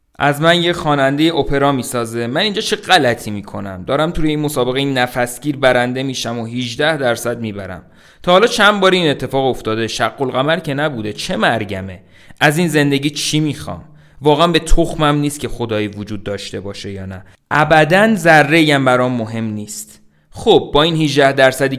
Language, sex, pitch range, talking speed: Persian, male, 110-155 Hz, 175 wpm